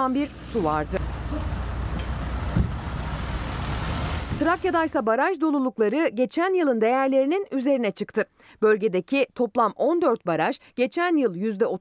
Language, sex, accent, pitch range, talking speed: Turkish, female, native, 185-285 Hz, 90 wpm